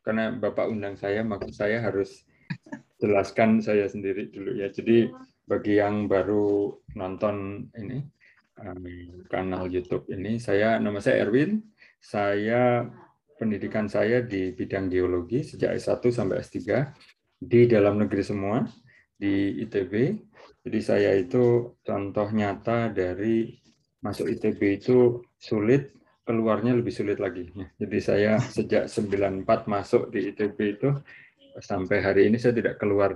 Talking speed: 125 wpm